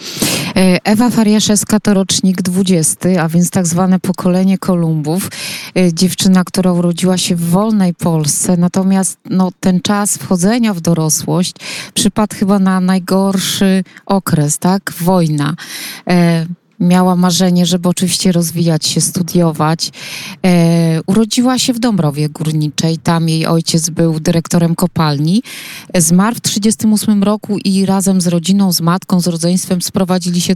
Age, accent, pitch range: 20-39, native, 170-195 Hz